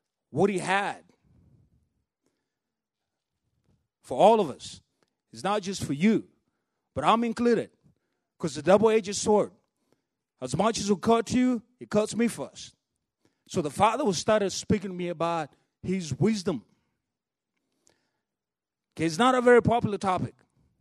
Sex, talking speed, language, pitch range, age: male, 135 wpm, English, 160-220 Hz, 30-49